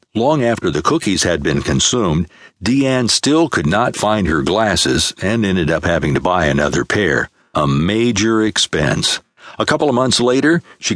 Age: 60-79